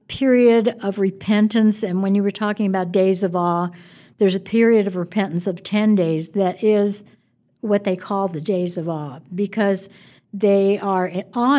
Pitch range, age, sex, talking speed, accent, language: 185-220 Hz, 60-79, female, 170 wpm, American, English